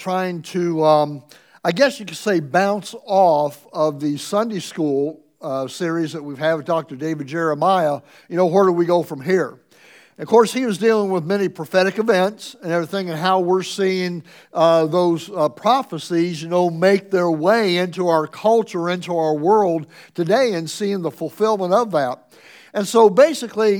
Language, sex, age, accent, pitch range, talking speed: English, male, 60-79, American, 170-215 Hz, 180 wpm